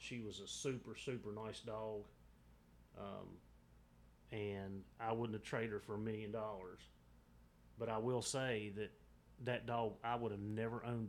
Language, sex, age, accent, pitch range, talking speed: English, male, 30-49, American, 80-115 Hz, 160 wpm